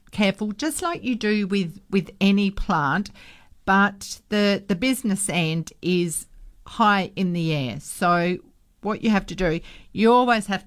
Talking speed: 155 wpm